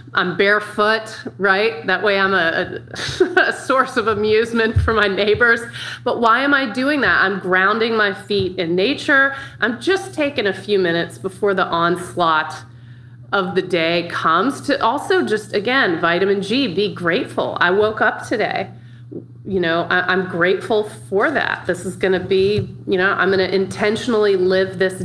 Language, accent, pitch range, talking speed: English, American, 175-225 Hz, 170 wpm